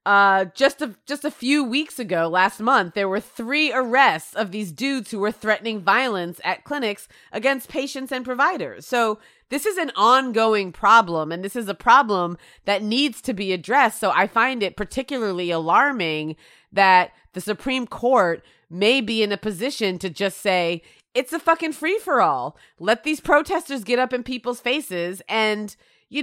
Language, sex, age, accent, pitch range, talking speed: English, female, 30-49, American, 195-260 Hz, 170 wpm